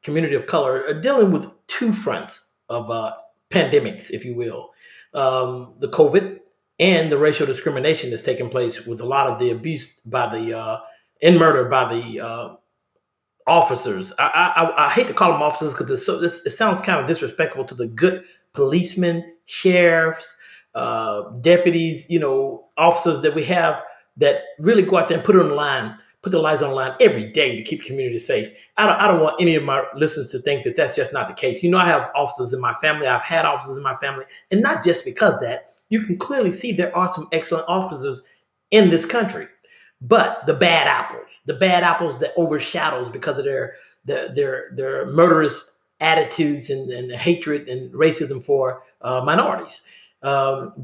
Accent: American